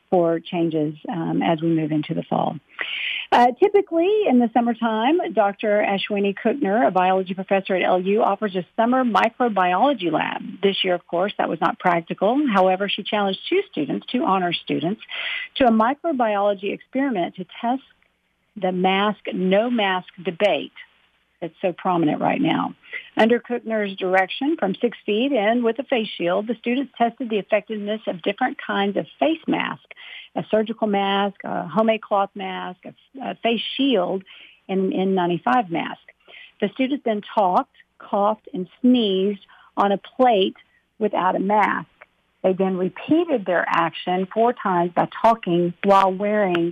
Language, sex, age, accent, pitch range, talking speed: English, female, 50-69, American, 185-240 Hz, 150 wpm